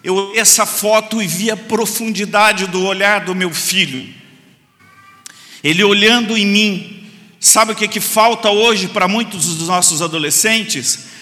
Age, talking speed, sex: 50-69, 150 wpm, male